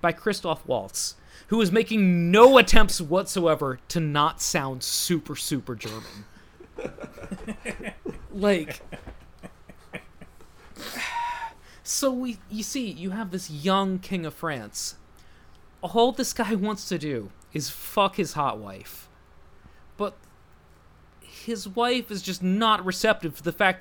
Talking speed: 120 wpm